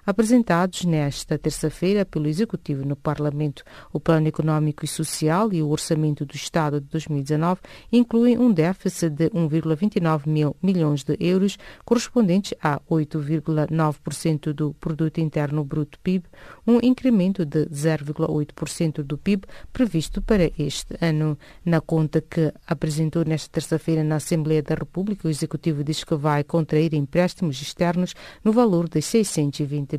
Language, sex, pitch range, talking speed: English, female, 150-185 Hz, 135 wpm